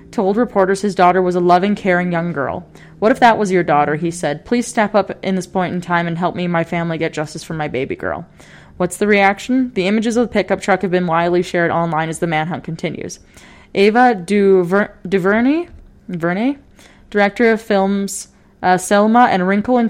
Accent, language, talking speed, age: American, English, 205 wpm, 20-39